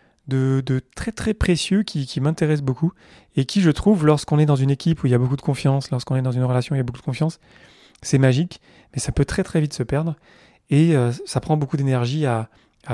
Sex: male